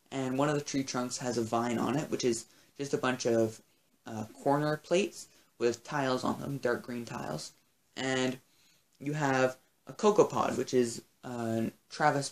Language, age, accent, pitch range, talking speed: English, 20-39, American, 120-140 Hz, 180 wpm